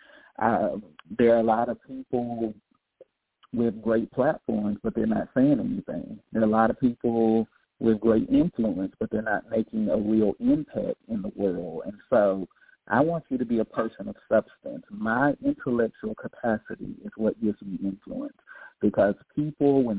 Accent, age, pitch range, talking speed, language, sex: American, 50-69, 105-130 Hz, 165 wpm, English, male